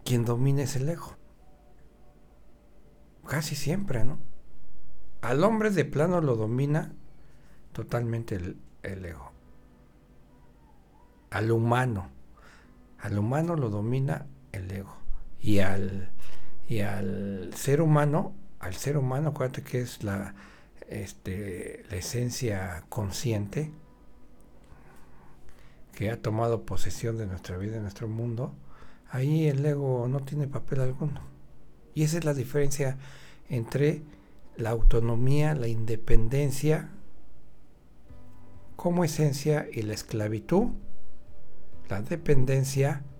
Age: 60-79